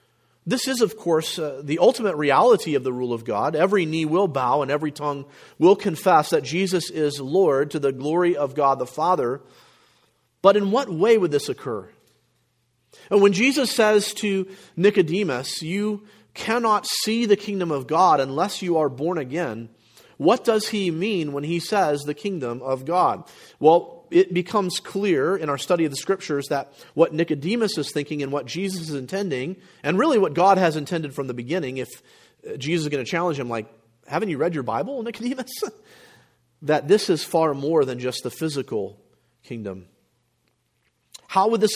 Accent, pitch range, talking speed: American, 145-195 Hz, 180 wpm